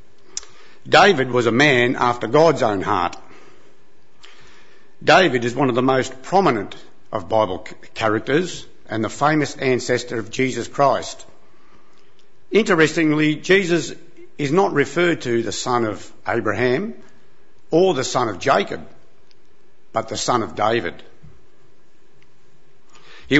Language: English